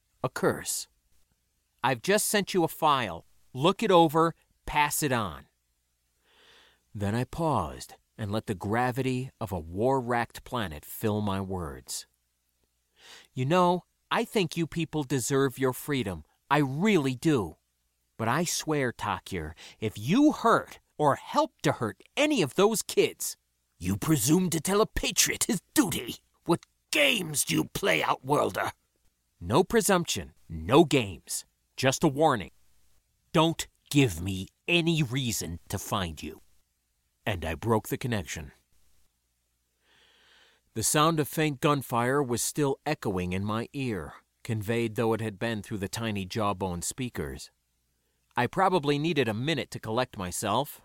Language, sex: English, male